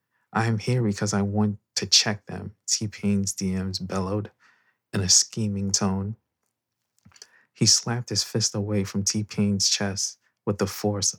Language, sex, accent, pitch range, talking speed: English, male, American, 95-110 Hz, 145 wpm